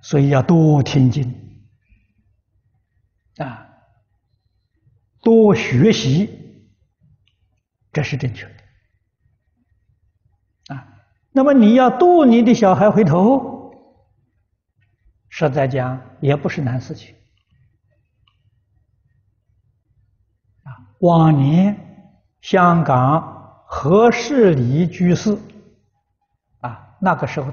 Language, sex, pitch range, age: Chinese, male, 110-175 Hz, 60-79